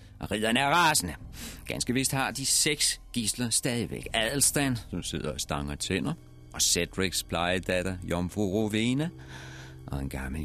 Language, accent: Danish, native